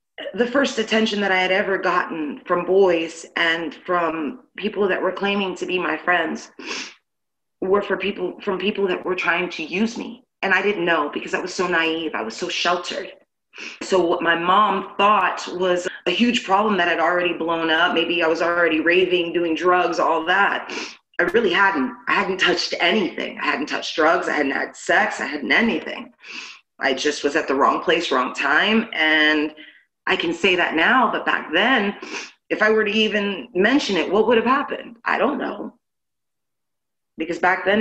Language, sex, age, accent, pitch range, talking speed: English, female, 30-49, American, 170-210 Hz, 190 wpm